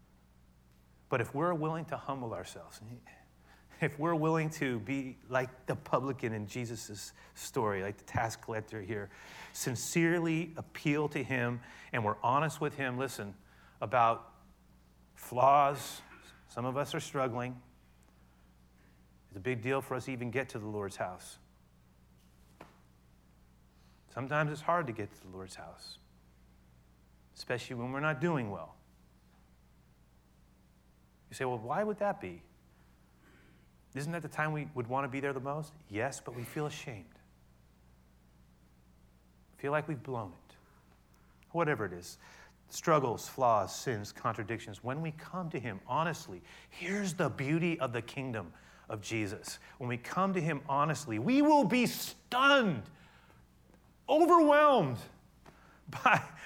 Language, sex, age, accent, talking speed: English, male, 40-59, American, 140 wpm